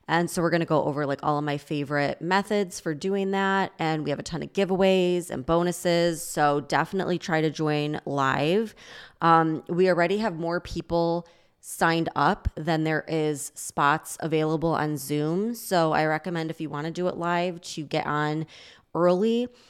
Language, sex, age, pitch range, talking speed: English, female, 20-39, 155-190 Hz, 185 wpm